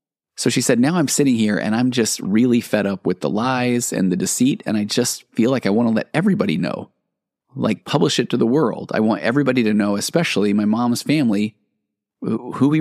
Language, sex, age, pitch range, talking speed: English, male, 30-49, 100-120 Hz, 220 wpm